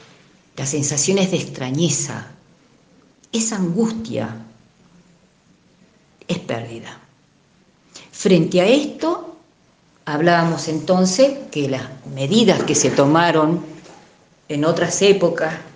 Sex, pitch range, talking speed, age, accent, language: female, 150-185 Hz, 85 wpm, 40-59, Argentinian, Spanish